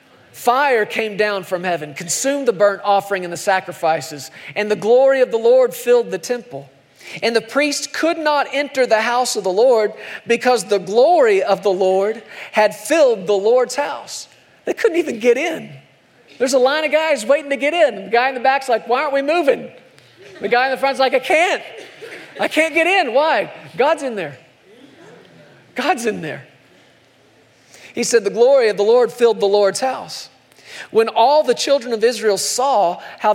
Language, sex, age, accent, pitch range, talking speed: English, male, 40-59, American, 185-270 Hz, 190 wpm